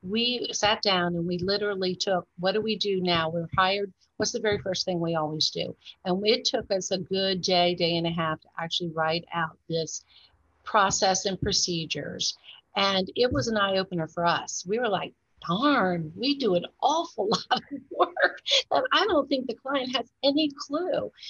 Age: 50-69